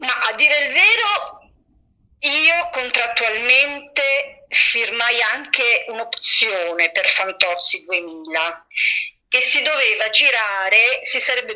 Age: 50-69